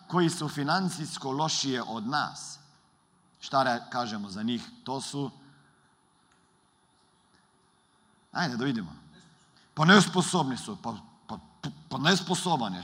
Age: 50-69